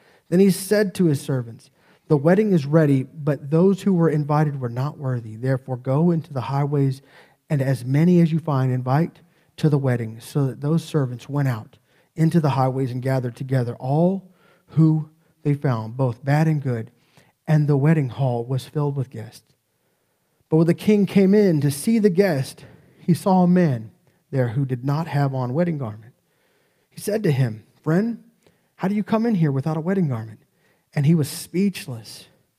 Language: English